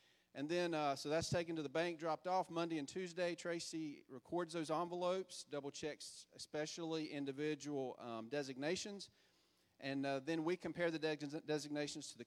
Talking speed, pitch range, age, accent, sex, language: 155 wpm, 140-170 Hz, 40-59, American, male, English